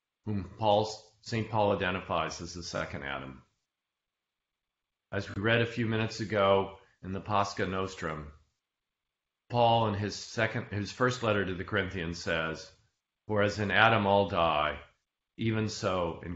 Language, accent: English, American